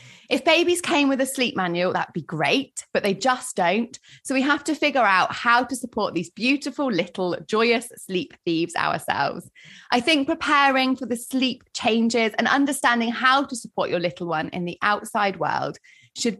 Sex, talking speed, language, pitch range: female, 185 wpm, English, 175-260 Hz